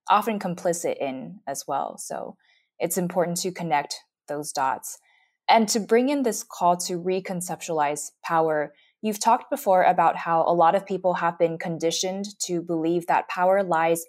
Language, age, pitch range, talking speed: English, 20-39, 160-185 Hz, 160 wpm